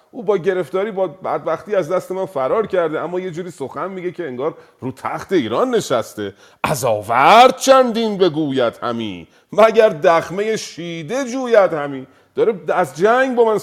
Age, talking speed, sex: 40-59, 160 wpm, male